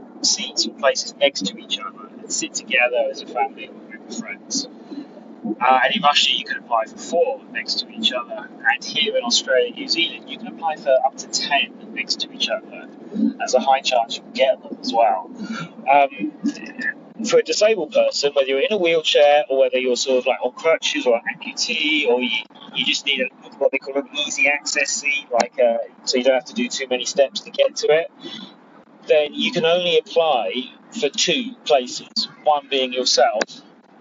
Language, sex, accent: English, male, British